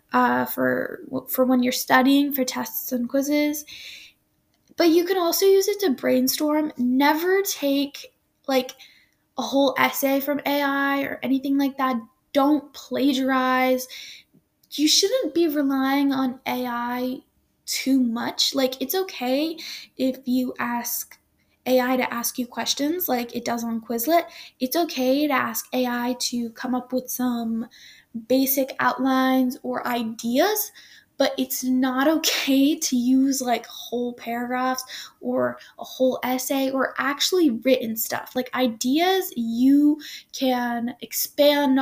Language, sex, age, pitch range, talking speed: English, female, 10-29, 250-290 Hz, 130 wpm